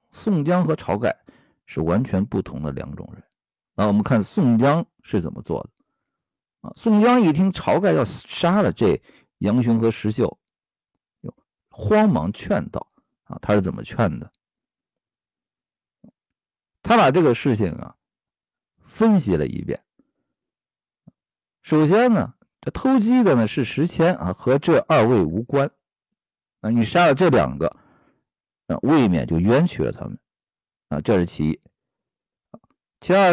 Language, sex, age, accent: Chinese, male, 50-69, native